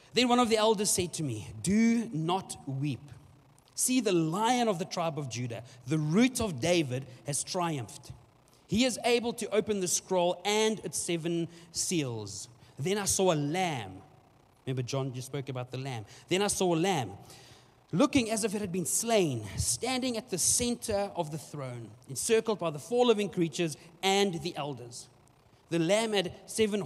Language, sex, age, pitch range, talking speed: English, male, 30-49, 125-190 Hz, 180 wpm